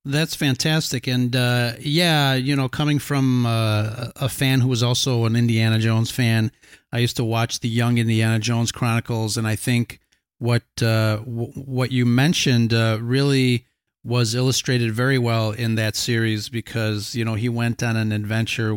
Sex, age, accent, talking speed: male, 30-49, American, 175 wpm